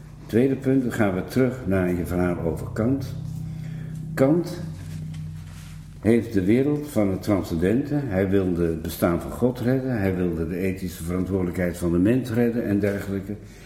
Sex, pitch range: male, 85-115 Hz